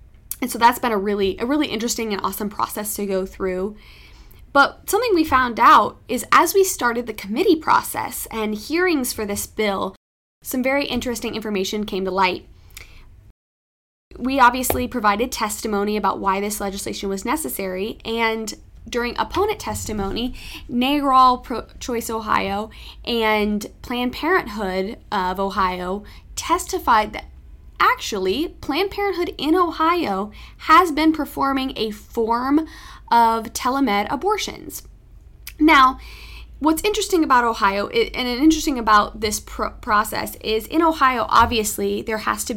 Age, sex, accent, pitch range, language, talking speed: 10-29, female, American, 205-275 Hz, English, 135 wpm